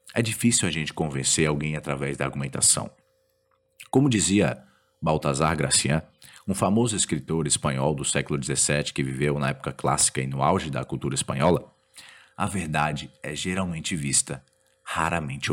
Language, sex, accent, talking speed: Portuguese, male, Brazilian, 145 wpm